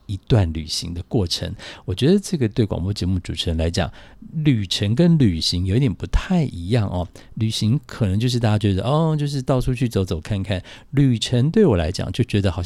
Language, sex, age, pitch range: Chinese, male, 50-69, 95-125 Hz